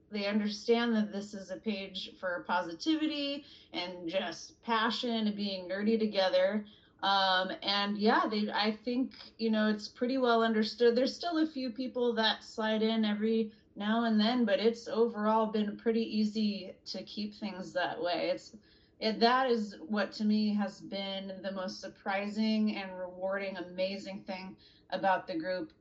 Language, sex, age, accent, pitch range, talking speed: English, female, 30-49, American, 195-230 Hz, 165 wpm